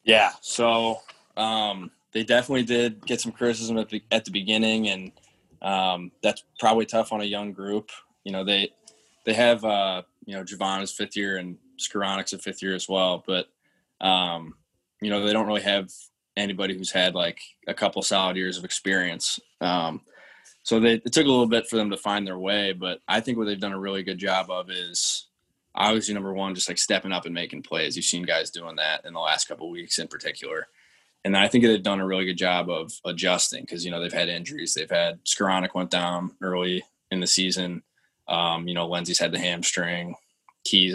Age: 20-39